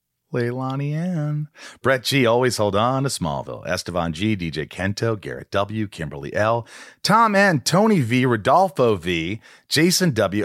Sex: male